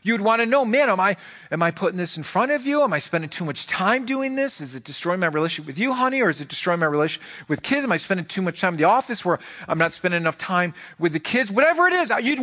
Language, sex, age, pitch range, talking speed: English, male, 40-59, 150-225 Hz, 290 wpm